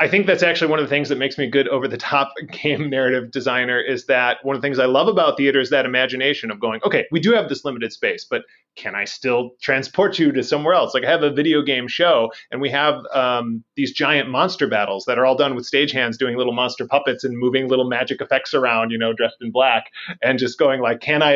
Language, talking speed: English, 260 wpm